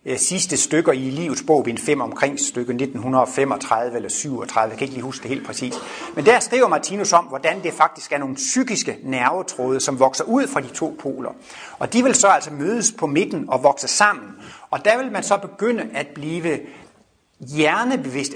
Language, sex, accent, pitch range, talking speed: Danish, male, native, 135-190 Hz, 195 wpm